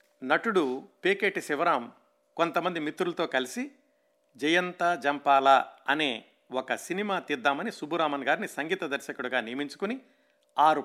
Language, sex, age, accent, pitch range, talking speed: Telugu, male, 50-69, native, 130-180 Hz, 100 wpm